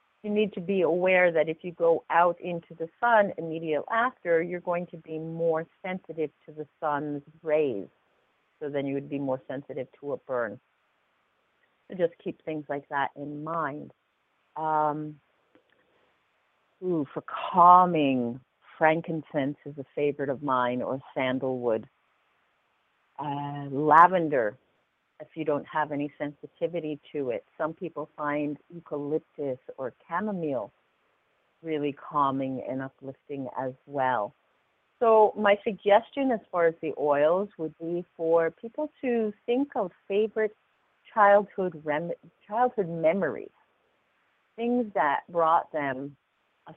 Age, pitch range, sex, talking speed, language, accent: 50-69, 145-195 Hz, female, 130 wpm, English, American